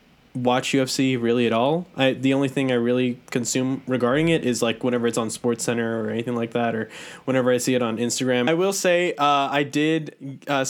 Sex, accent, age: male, American, 10-29